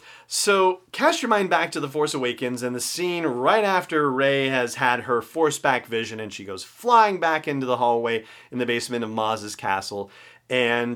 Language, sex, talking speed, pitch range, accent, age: English, male, 195 wpm, 115-145 Hz, American, 30-49